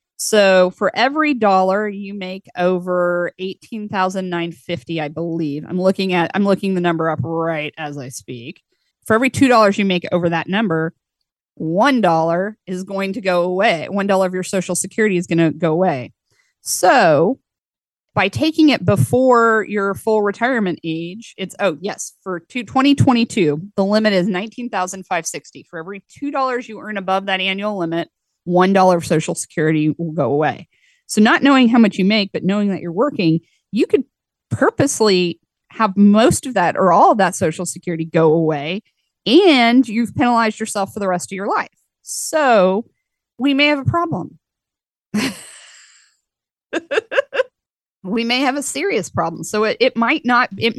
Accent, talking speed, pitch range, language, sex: American, 160 wpm, 175-235 Hz, English, female